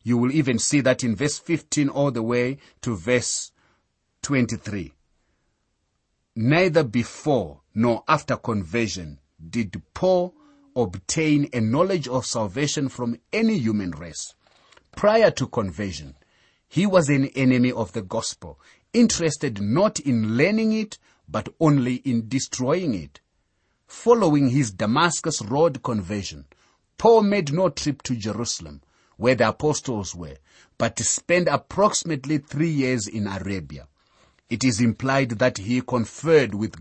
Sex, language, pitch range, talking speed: male, English, 105-150 Hz, 130 wpm